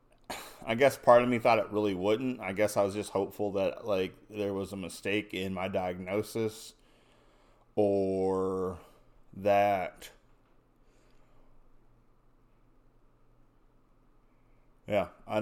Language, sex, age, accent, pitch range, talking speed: English, male, 20-39, American, 95-110 Hz, 110 wpm